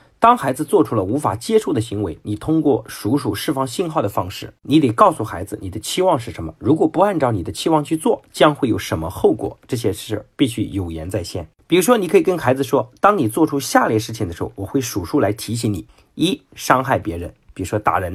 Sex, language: male, Chinese